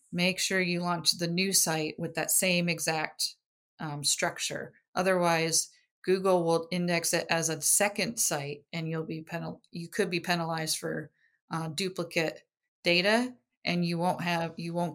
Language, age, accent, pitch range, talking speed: English, 30-49, American, 165-190 Hz, 160 wpm